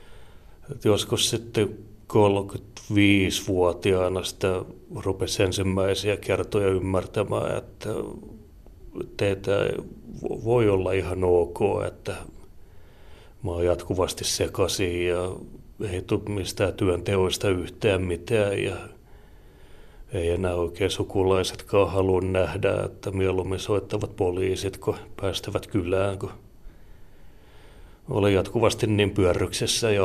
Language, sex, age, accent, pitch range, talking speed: Finnish, male, 30-49, native, 95-105 Hz, 90 wpm